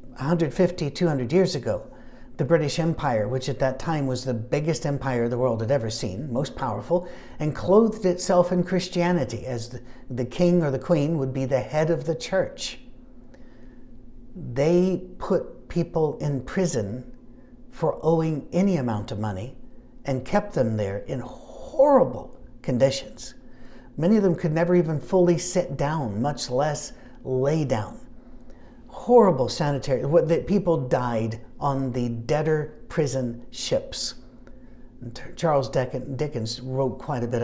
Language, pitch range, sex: English, 125-165 Hz, male